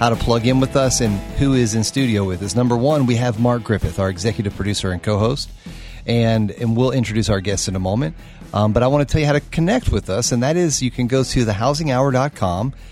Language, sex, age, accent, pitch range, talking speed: English, male, 40-59, American, 100-125 Hz, 245 wpm